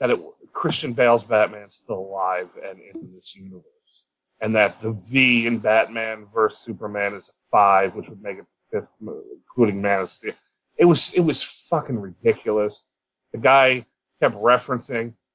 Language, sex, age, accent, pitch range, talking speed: English, male, 30-49, American, 110-155 Hz, 170 wpm